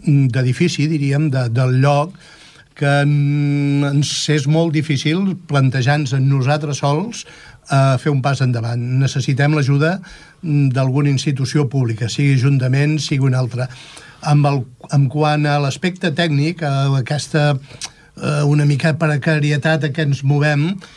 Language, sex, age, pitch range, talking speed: Italian, male, 60-79, 140-160 Hz, 115 wpm